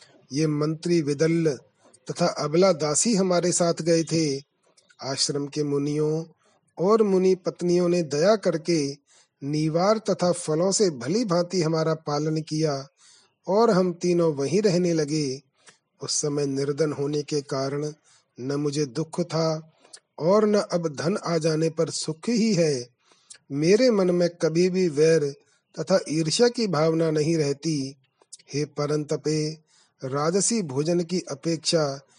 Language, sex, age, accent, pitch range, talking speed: Hindi, male, 30-49, native, 150-180 Hz, 135 wpm